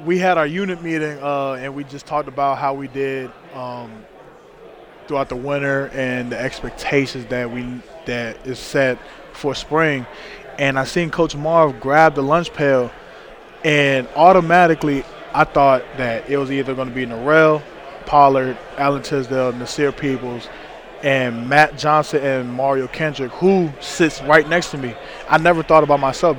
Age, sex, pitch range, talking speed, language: 20-39, male, 130-155 Hz, 160 wpm, English